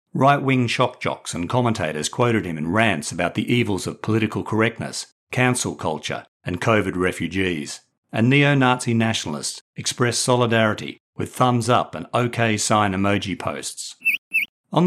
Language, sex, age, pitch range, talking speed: English, male, 50-69, 105-135 Hz, 135 wpm